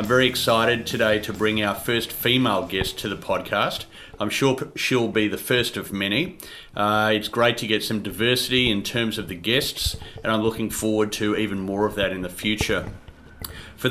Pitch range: 105-125 Hz